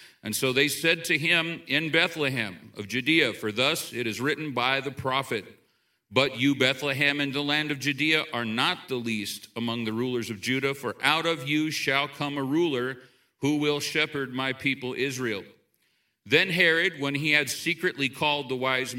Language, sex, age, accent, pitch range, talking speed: English, male, 40-59, American, 130-155 Hz, 185 wpm